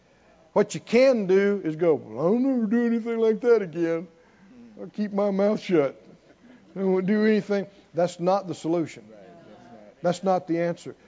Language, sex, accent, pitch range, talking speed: English, male, American, 205-275 Hz, 170 wpm